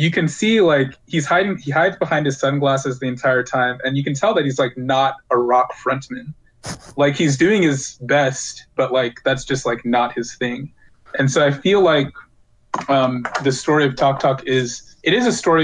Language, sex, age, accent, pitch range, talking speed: English, male, 20-39, American, 125-140 Hz, 205 wpm